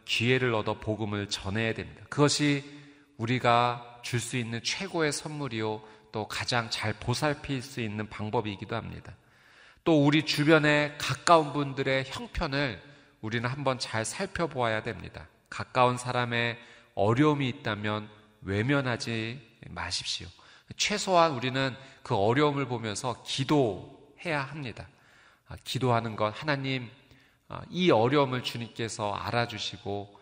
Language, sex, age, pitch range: Korean, male, 30-49, 105-130 Hz